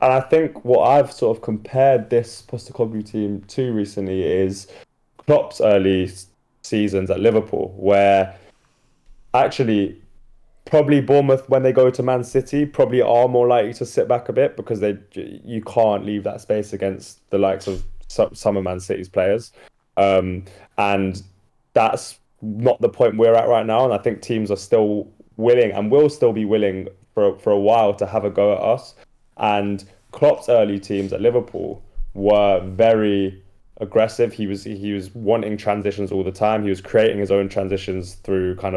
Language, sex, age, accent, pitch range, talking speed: English, male, 10-29, British, 100-120 Hz, 175 wpm